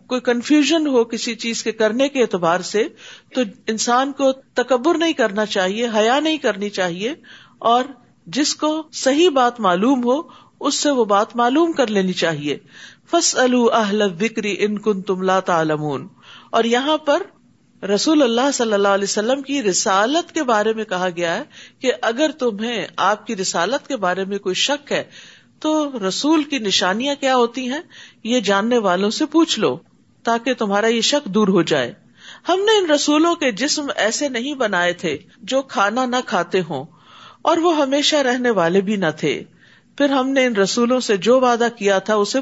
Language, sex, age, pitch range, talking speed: Urdu, female, 50-69, 190-270 Hz, 175 wpm